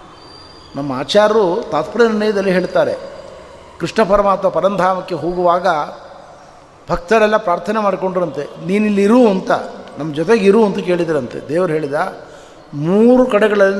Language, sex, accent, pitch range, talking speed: Kannada, male, native, 155-205 Hz, 100 wpm